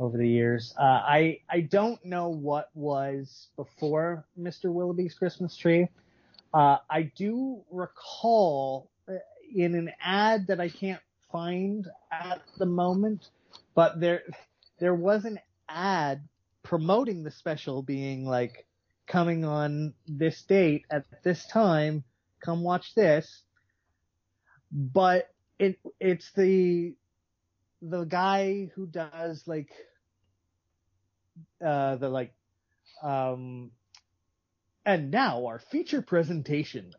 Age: 30-49